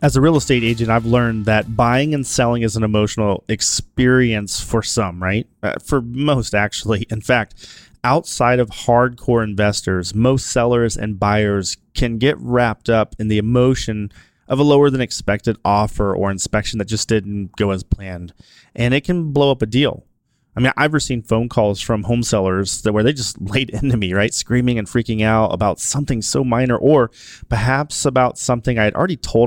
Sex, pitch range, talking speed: male, 100-125 Hz, 185 wpm